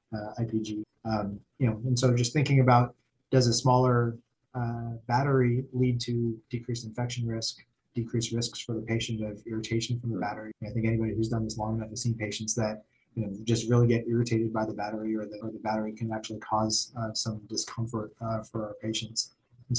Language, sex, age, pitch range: English, male, 20-39, 110-120 Hz